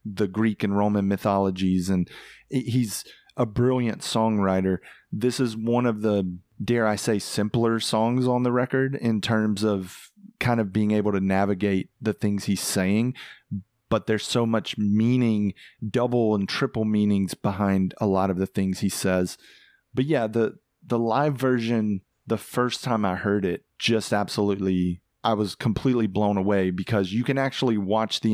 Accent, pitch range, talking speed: American, 100-115 Hz, 165 wpm